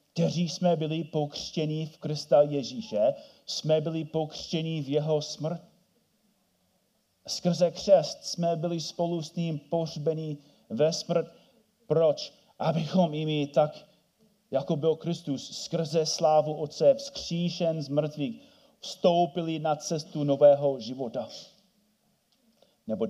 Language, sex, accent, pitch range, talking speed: Czech, male, native, 135-175 Hz, 110 wpm